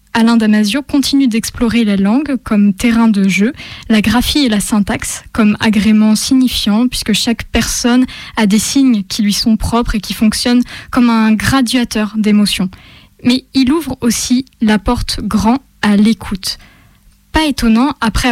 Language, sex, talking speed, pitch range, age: French, female, 155 wpm, 210-250 Hz, 10-29